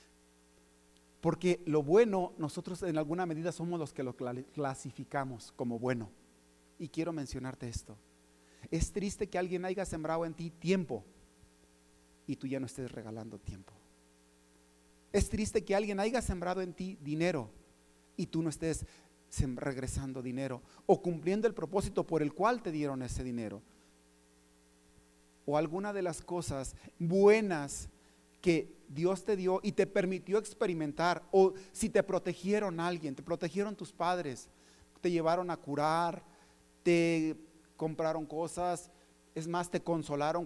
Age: 40-59